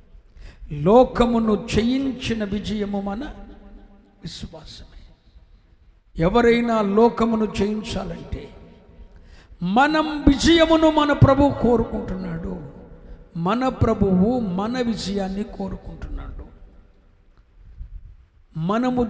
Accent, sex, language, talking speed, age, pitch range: native, male, Telugu, 60 wpm, 60-79, 170-260 Hz